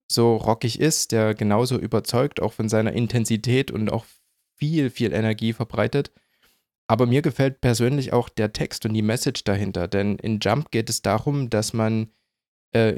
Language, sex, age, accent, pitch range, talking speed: German, male, 20-39, German, 105-120 Hz, 165 wpm